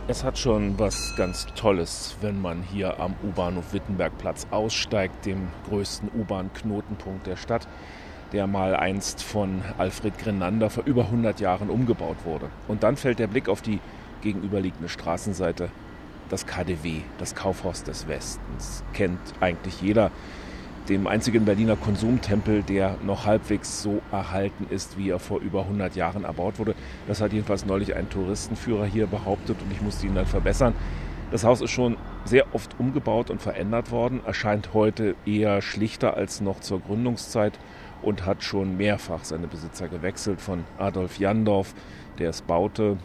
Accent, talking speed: German, 155 wpm